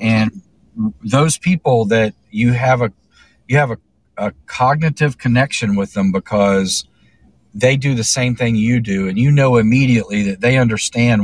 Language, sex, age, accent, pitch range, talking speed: English, male, 40-59, American, 100-125 Hz, 160 wpm